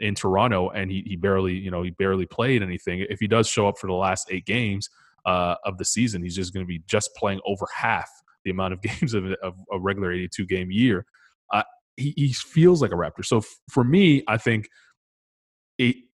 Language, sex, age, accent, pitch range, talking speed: English, male, 20-39, American, 95-110 Hz, 225 wpm